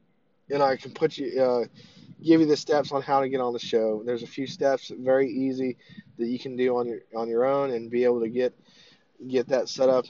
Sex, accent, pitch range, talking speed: male, American, 120-140 Hz, 245 wpm